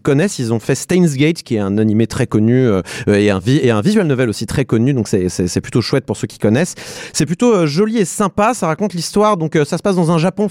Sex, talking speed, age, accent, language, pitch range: male, 275 wpm, 30-49, French, French, 125-185 Hz